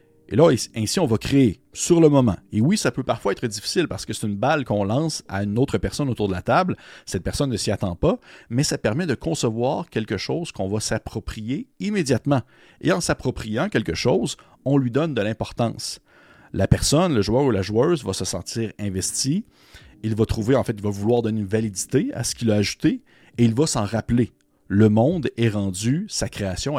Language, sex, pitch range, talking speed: French, male, 100-130 Hz, 215 wpm